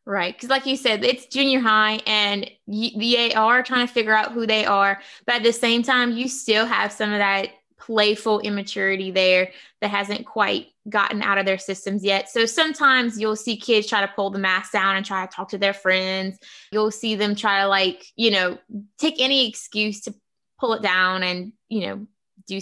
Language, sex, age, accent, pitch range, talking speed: English, female, 20-39, American, 200-235 Hz, 210 wpm